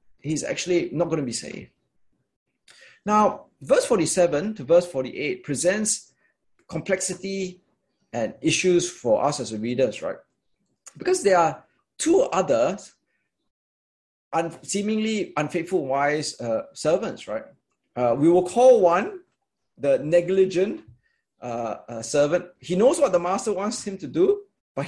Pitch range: 145-210 Hz